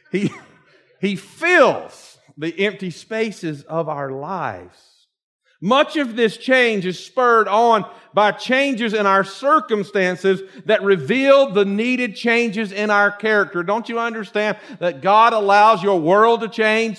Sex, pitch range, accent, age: male, 175-235 Hz, American, 50-69